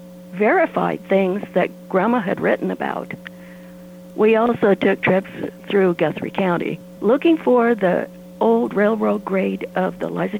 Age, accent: 60-79, American